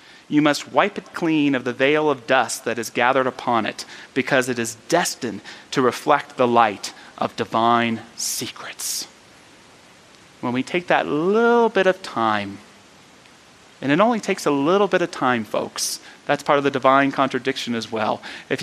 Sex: male